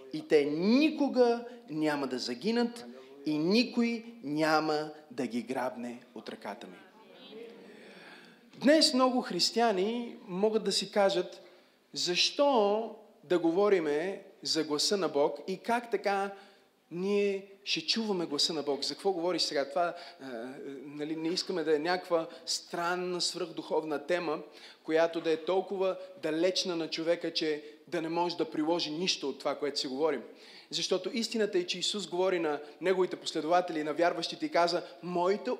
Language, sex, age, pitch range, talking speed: Bulgarian, male, 30-49, 165-225 Hz, 145 wpm